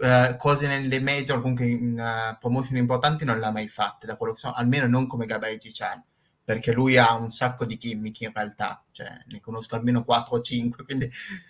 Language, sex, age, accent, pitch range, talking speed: Italian, male, 20-39, native, 115-130 Hz, 215 wpm